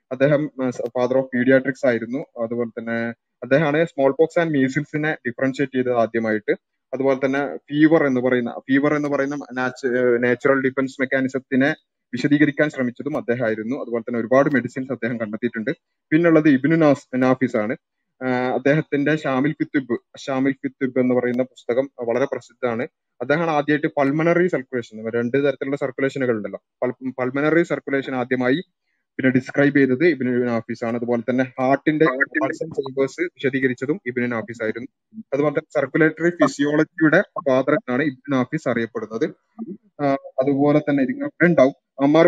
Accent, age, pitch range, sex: native, 20-39, 125-145 Hz, male